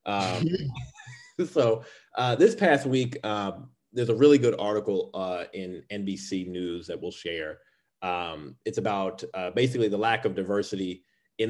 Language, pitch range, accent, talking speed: English, 90-110 Hz, American, 150 wpm